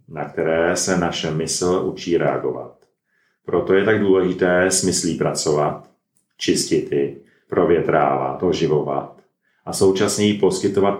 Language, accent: Czech, native